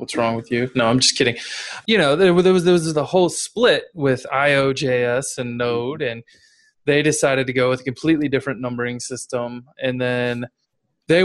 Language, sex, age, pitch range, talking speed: English, male, 20-39, 125-160 Hz, 180 wpm